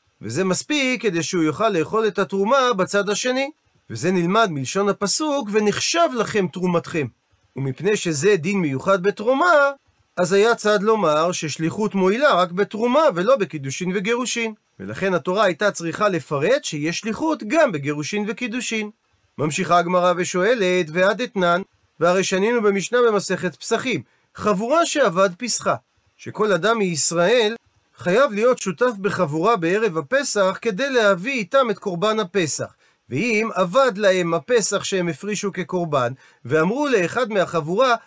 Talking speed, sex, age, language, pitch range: 130 wpm, male, 40-59, Hebrew, 180-235 Hz